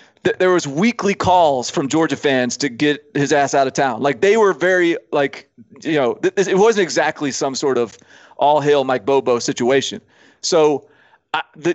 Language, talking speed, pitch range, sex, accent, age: English, 175 wpm, 135-165 Hz, male, American, 30-49